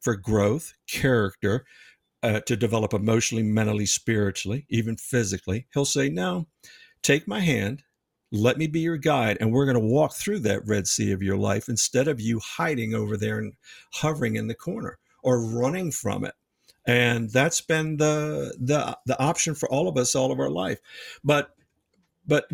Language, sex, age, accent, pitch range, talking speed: English, male, 50-69, American, 110-140 Hz, 175 wpm